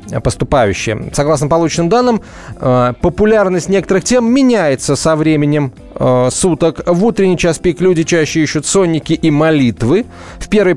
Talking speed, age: 130 wpm, 30-49